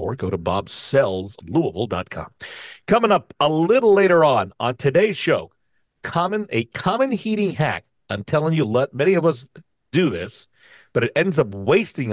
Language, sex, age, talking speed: English, male, 50-69, 160 wpm